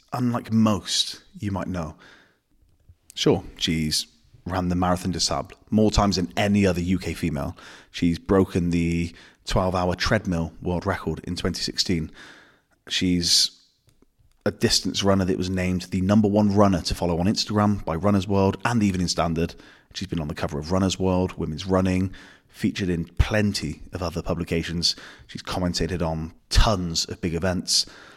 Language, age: English, 30-49